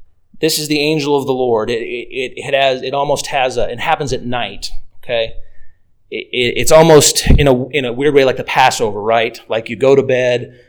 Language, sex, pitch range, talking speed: English, male, 110-150 Hz, 215 wpm